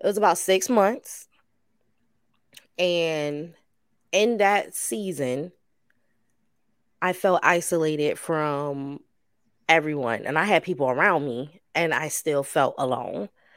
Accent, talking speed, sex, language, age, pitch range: American, 110 wpm, female, English, 20-39, 150-185 Hz